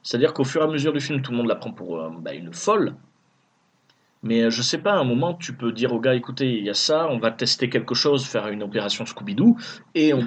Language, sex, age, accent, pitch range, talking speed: French, male, 30-49, French, 120-160 Hz, 275 wpm